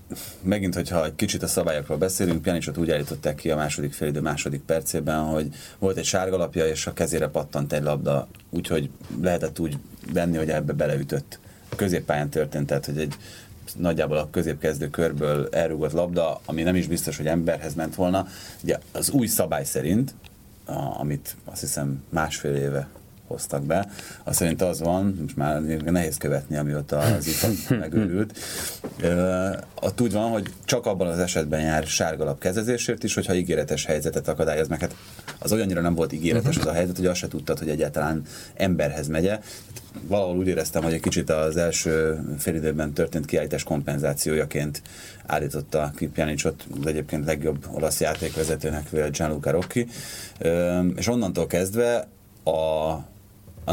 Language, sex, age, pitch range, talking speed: Hungarian, male, 30-49, 75-95 Hz, 155 wpm